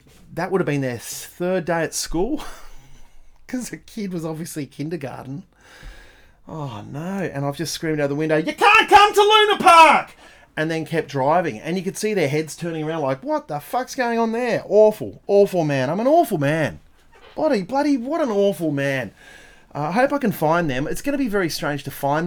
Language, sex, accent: English, male, Australian